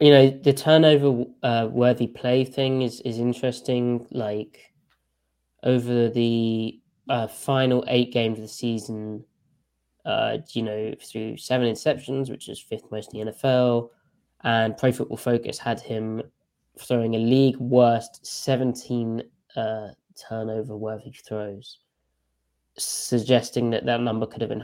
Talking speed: 130 wpm